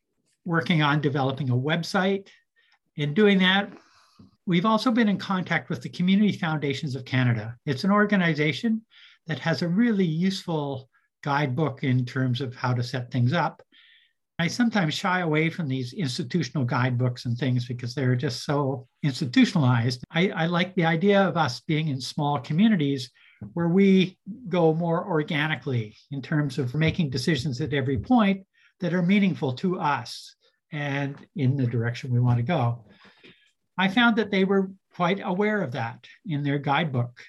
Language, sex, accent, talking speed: English, male, American, 160 wpm